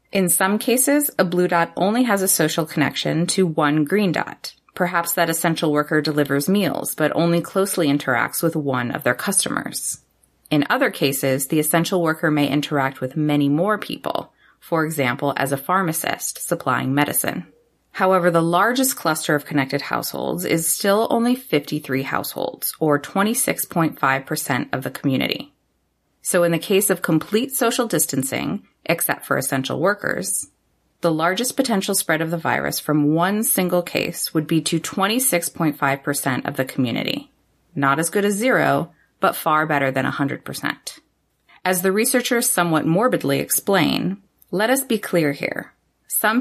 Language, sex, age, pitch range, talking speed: English, female, 30-49, 150-195 Hz, 155 wpm